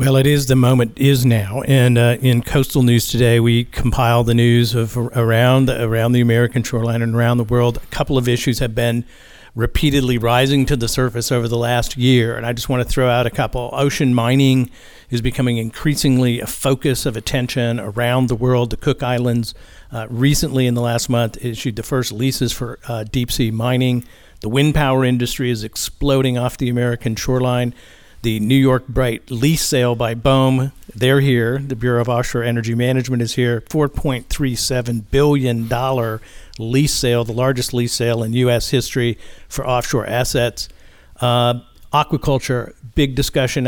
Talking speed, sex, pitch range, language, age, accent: 175 wpm, male, 120-130 Hz, English, 50-69, American